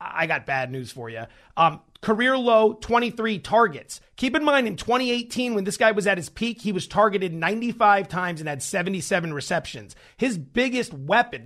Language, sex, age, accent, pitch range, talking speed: English, male, 30-49, American, 165-230 Hz, 185 wpm